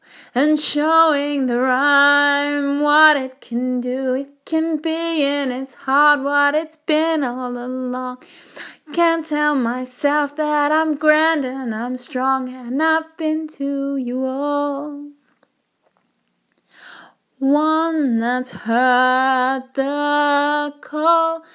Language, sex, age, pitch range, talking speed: English, female, 20-39, 265-315 Hz, 110 wpm